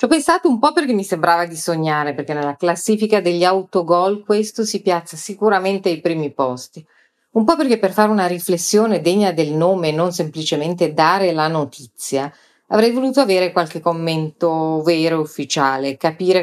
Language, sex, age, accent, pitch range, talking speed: Italian, female, 40-59, native, 155-185 Hz, 170 wpm